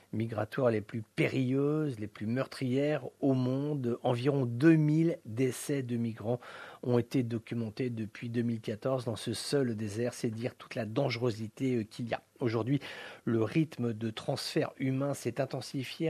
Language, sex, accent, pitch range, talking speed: English, male, French, 115-135 Hz, 145 wpm